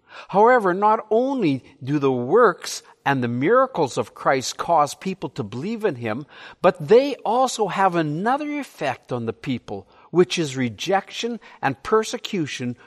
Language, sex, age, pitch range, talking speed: English, male, 60-79, 125-205 Hz, 145 wpm